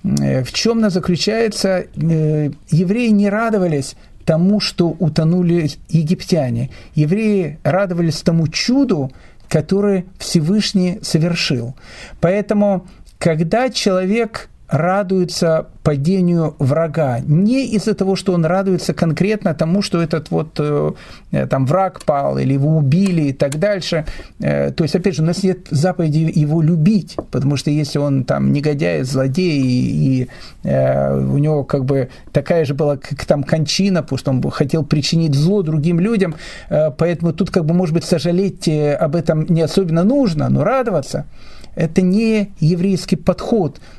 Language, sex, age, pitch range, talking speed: Russian, male, 50-69, 150-190 Hz, 140 wpm